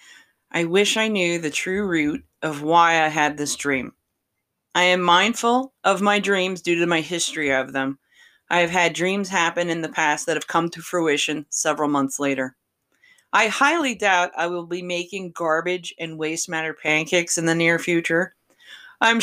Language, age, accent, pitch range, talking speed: English, 30-49, American, 155-200 Hz, 180 wpm